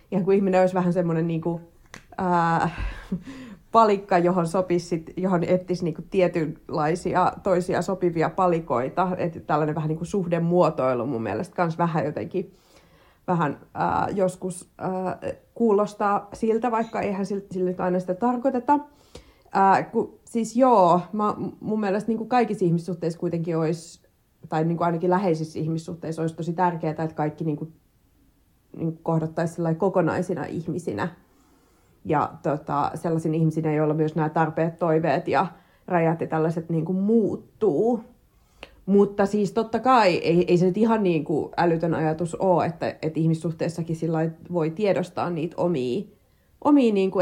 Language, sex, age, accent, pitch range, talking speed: Finnish, female, 30-49, native, 165-195 Hz, 120 wpm